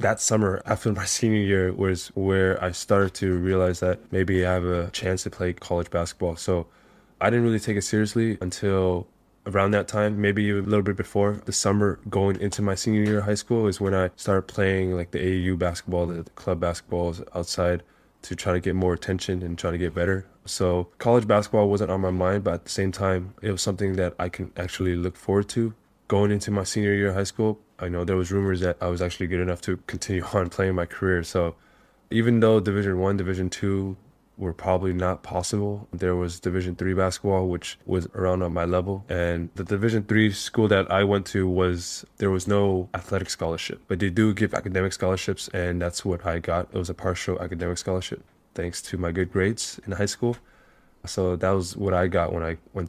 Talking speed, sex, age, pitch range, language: 215 wpm, male, 10-29, 90-100 Hz, English